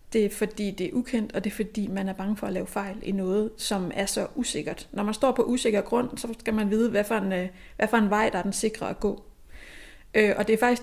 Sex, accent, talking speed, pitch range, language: female, native, 250 wpm, 205-240 Hz, Danish